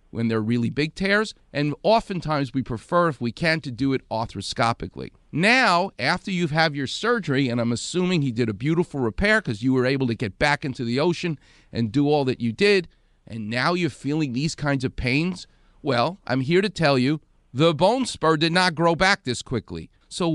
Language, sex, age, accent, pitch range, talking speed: English, male, 40-59, American, 125-180 Hz, 205 wpm